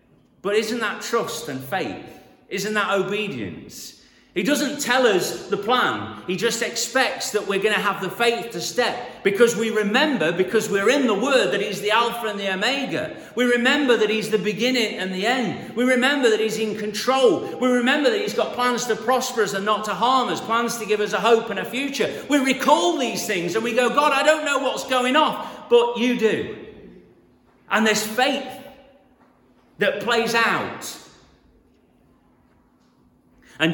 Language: English